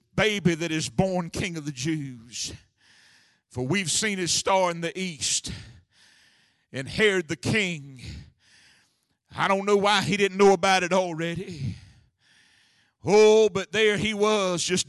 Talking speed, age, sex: 145 wpm, 50-69, male